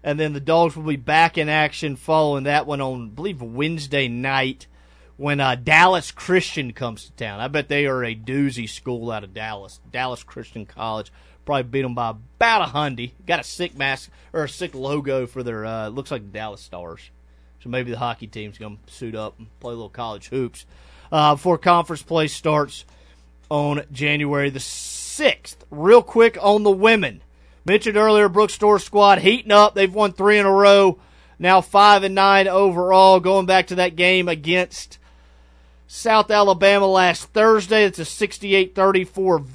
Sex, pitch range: male, 125-180 Hz